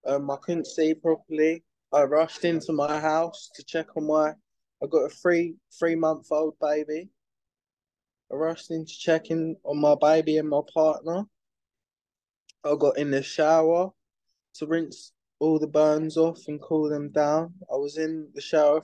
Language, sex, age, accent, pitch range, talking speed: English, male, 20-39, British, 135-160 Hz, 160 wpm